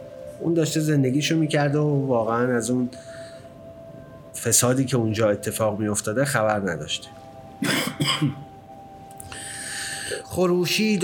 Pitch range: 125-160 Hz